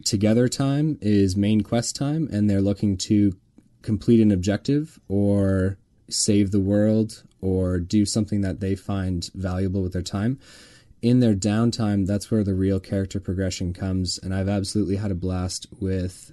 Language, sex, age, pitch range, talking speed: English, male, 20-39, 95-115 Hz, 160 wpm